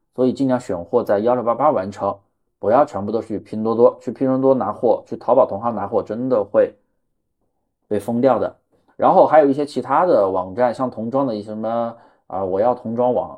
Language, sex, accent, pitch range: Chinese, male, native, 110-145 Hz